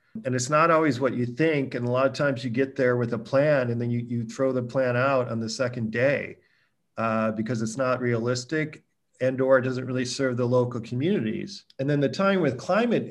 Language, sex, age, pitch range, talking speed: English, male, 40-59, 125-165 Hz, 230 wpm